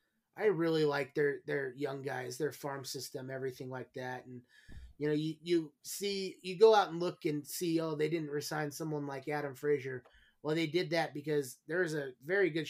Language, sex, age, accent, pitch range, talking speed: English, male, 30-49, American, 140-170 Hz, 205 wpm